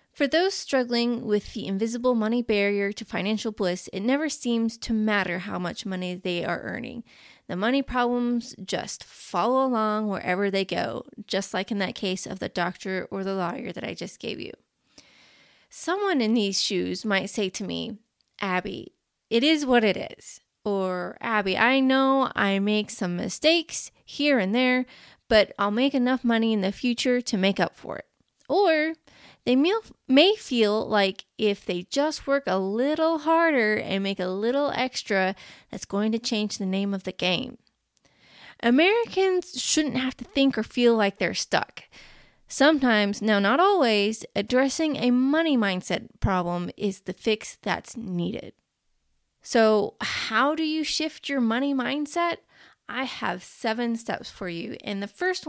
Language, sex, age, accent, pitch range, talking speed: English, female, 20-39, American, 200-265 Hz, 165 wpm